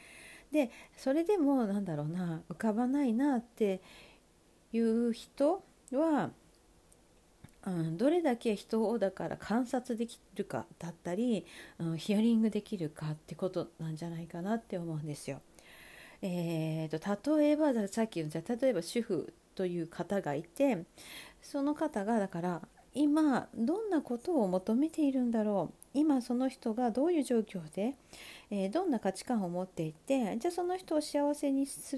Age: 40-59